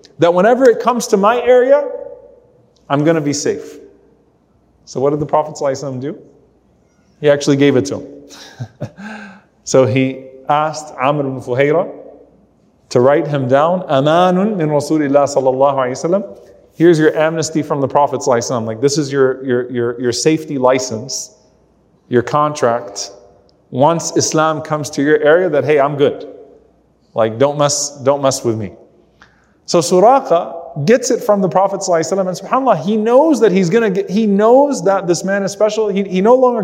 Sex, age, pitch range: male, 30-49, 140-195 Hz